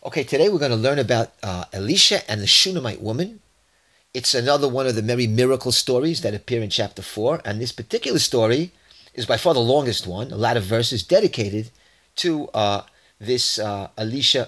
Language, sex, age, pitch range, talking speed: English, male, 30-49, 110-160 Hz, 190 wpm